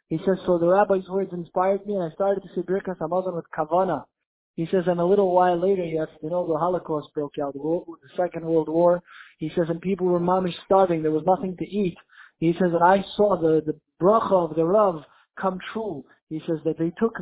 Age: 20-39